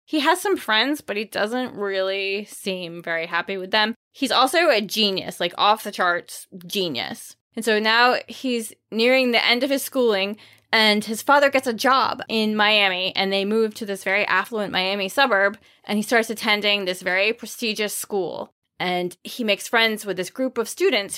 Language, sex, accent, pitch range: English, female, American, 190-250 Hz